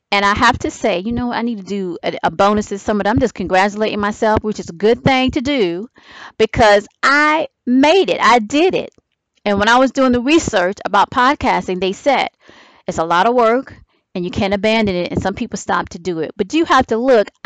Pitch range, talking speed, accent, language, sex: 185-240 Hz, 225 wpm, American, English, female